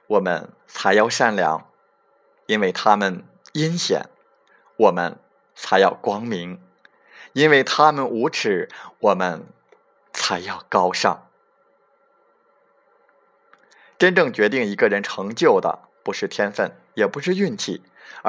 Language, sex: Chinese, male